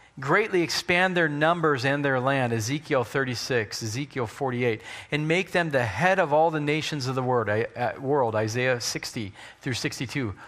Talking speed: 155 wpm